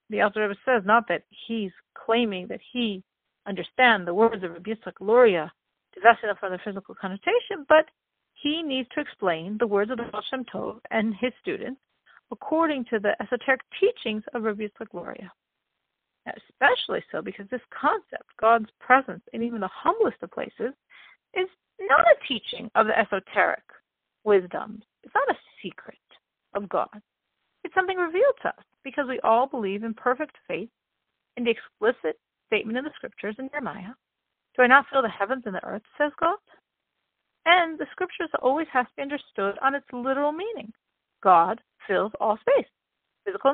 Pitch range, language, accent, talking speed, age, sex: 220-310 Hz, English, American, 165 wpm, 50-69, female